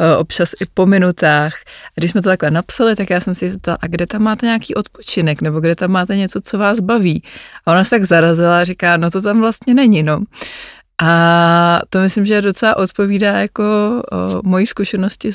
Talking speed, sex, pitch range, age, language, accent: 200 wpm, female, 165-185 Hz, 20-39, Czech, native